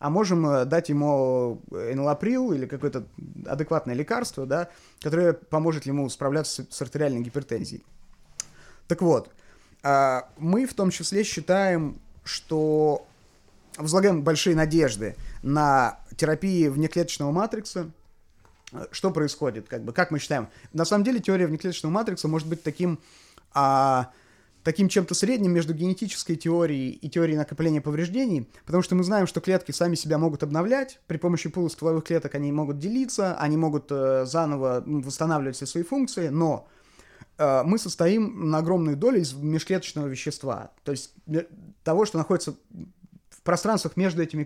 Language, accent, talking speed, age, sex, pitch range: Russian, native, 135 wpm, 30-49, male, 145-185 Hz